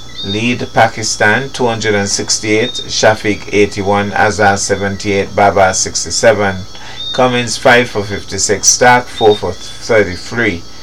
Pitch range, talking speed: 100-115 Hz, 95 wpm